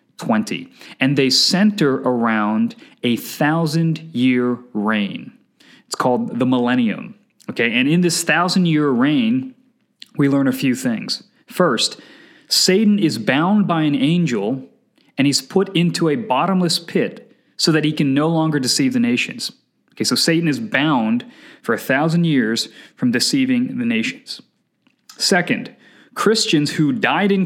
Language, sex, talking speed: English, male, 145 wpm